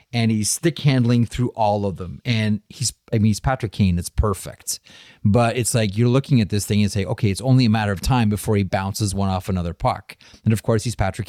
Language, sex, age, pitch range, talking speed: English, male, 30-49, 95-120 Hz, 235 wpm